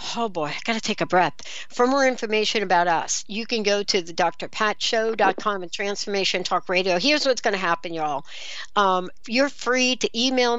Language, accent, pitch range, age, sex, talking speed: English, American, 185-235 Hz, 60-79, female, 195 wpm